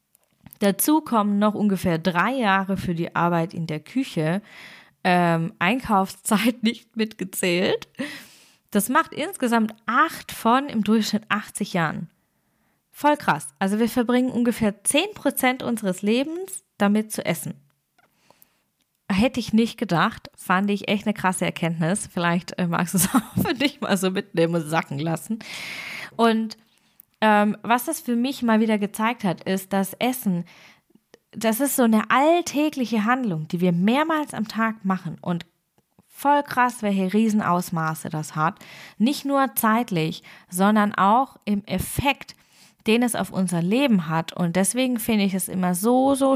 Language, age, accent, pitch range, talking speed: German, 20-39, German, 175-230 Hz, 145 wpm